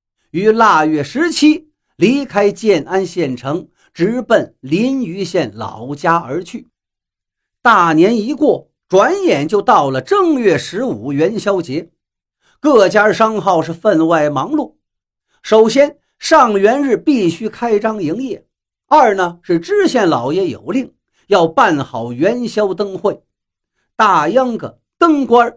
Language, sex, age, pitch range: Chinese, male, 50-69, 175-295 Hz